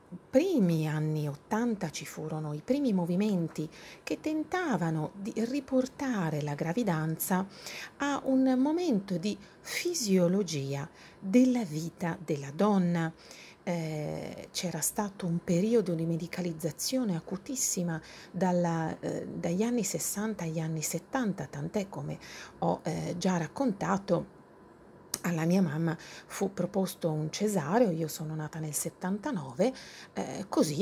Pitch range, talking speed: 160-225 Hz, 115 wpm